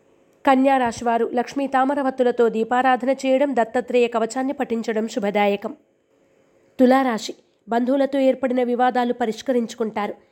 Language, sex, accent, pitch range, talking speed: Telugu, female, native, 225-260 Hz, 85 wpm